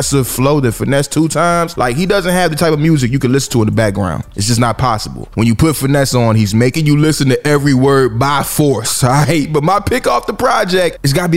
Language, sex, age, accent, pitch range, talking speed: English, male, 20-39, American, 120-165 Hz, 260 wpm